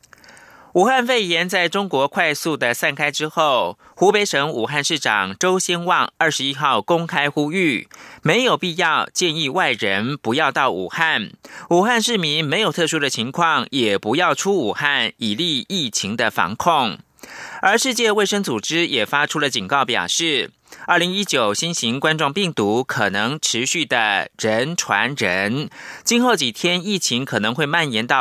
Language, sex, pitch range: German, male, 145-195 Hz